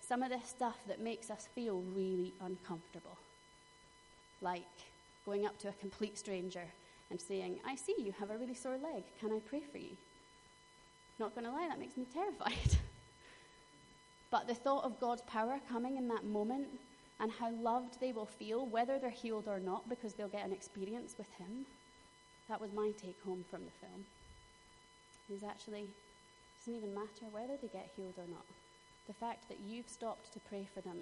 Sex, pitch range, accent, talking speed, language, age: female, 195-230 Hz, British, 185 wpm, English, 30-49